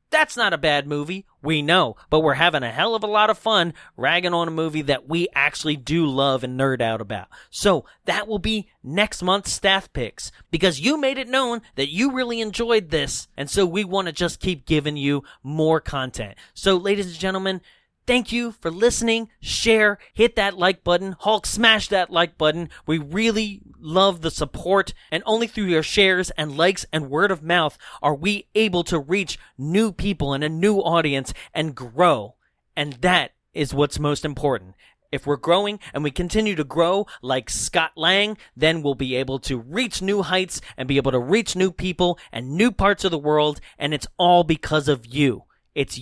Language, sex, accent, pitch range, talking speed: English, male, American, 145-200 Hz, 195 wpm